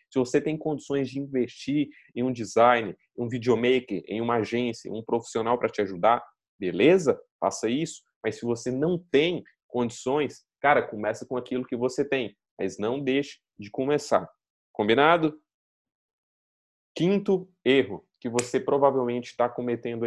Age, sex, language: 20-39, male, Portuguese